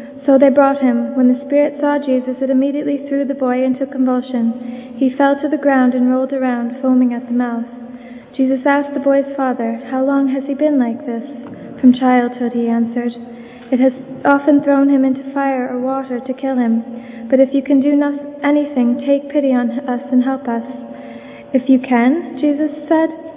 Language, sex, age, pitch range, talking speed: English, female, 20-39, 250-280 Hz, 190 wpm